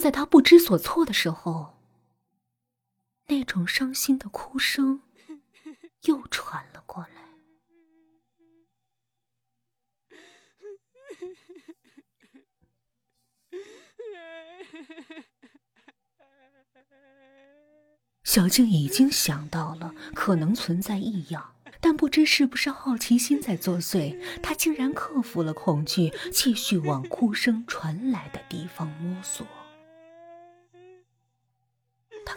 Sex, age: female, 20-39